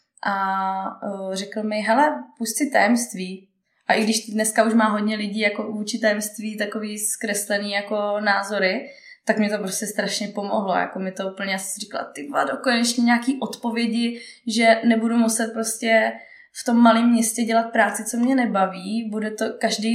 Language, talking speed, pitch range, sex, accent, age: Czech, 160 wpm, 200-225 Hz, female, native, 20-39